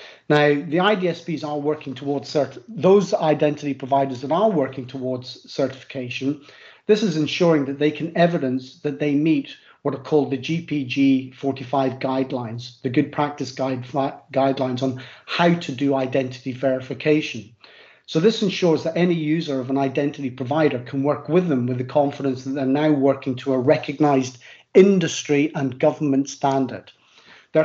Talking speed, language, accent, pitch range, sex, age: 150 wpm, English, British, 135-155 Hz, male, 40-59